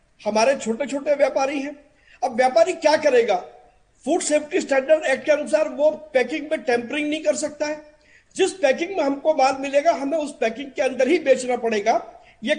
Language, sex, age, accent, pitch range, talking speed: Hindi, male, 50-69, native, 255-315 Hz, 90 wpm